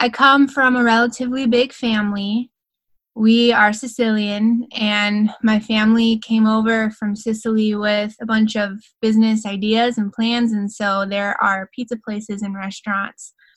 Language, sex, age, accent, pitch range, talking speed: English, female, 20-39, American, 205-235 Hz, 145 wpm